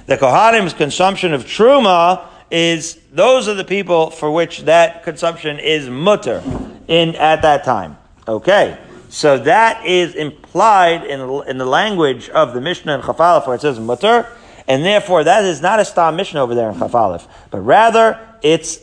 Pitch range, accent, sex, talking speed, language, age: 145-180 Hz, American, male, 170 wpm, English, 40-59